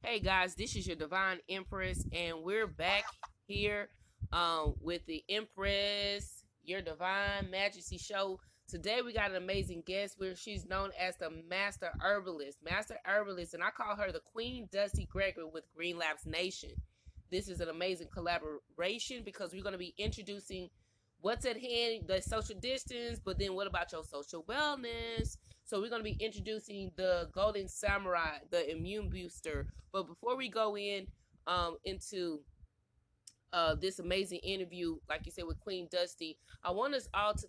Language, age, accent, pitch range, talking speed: English, 20-39, American, 165-205 Hz, 165 wpm